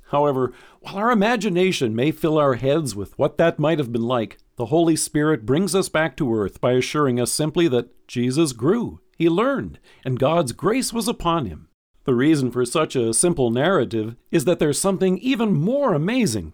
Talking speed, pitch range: 190 wpm, 125-180 Hz